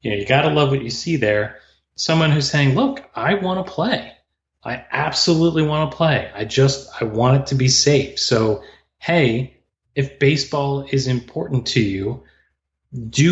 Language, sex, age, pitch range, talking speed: English, male, 30-49, 110-135 Hz, 180 wpm